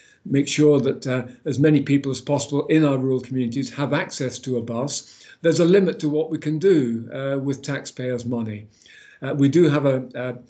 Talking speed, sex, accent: 205 wpm, male, British